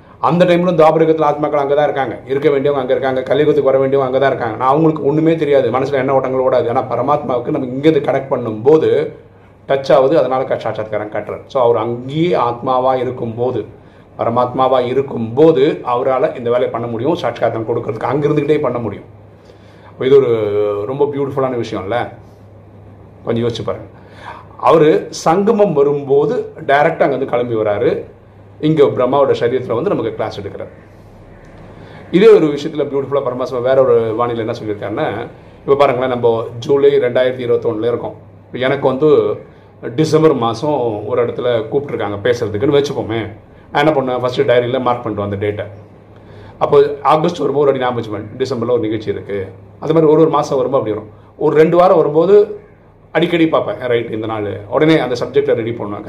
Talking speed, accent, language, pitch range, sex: 155 wpm, native, Tamil, 115-155 Hz, male